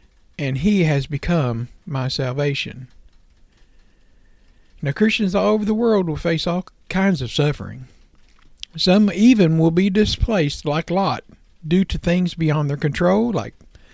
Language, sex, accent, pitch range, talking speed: English, male, American, 145-185 Hz, 140 wpm